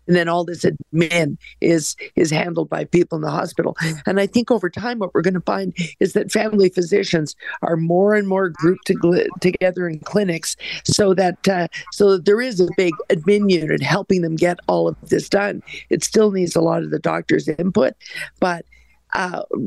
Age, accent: 50-69, American